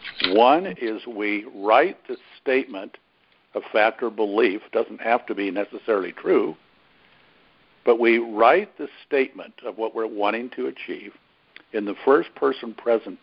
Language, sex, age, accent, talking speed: English, male, 60-79, American, 150 wpm